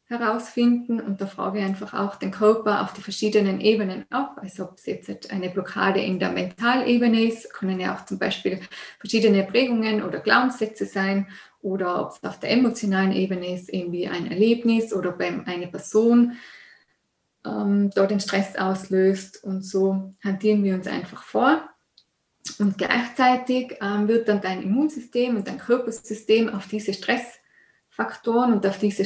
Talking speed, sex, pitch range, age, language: 160 wpm, female, 195-235 Hz, 20-39, German